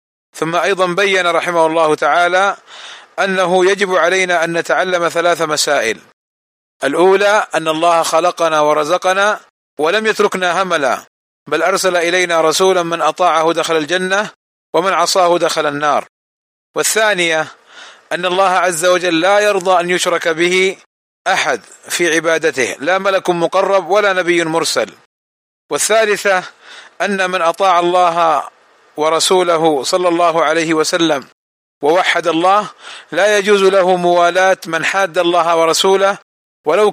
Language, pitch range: Arabic, 165-190 Hz